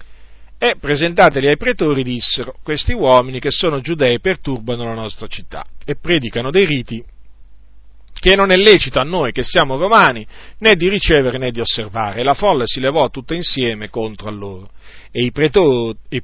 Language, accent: Italian, native